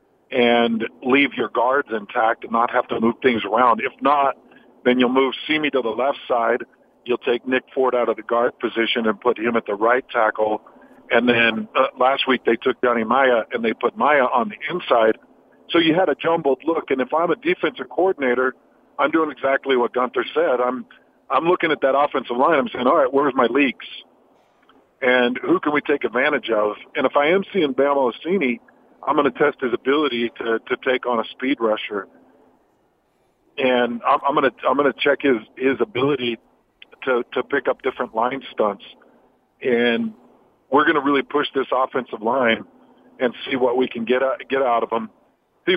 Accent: American